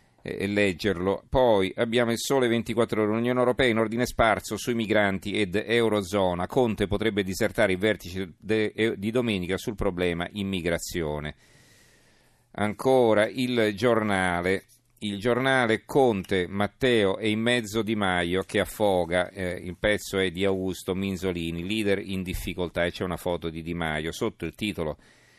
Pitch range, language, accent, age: 95-115 Hz, Italian, native, 40-59